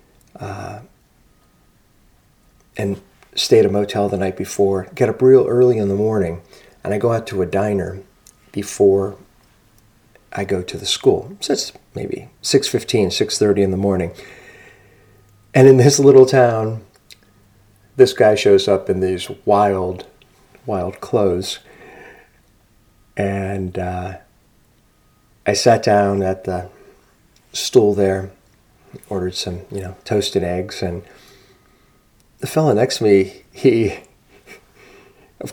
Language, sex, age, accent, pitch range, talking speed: English, male, 40-59, American, 95-125 Hz, 125 wpm